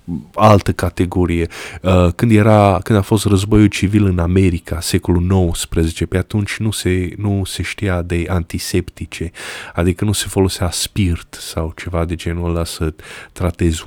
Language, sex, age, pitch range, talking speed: Romanian, male, 20-39, 85-105 Hz, 150 wpm